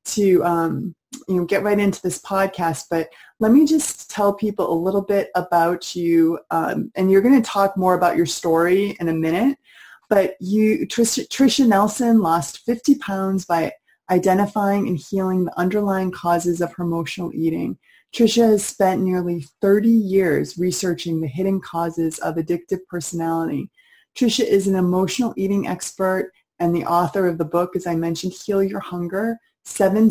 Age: 20-39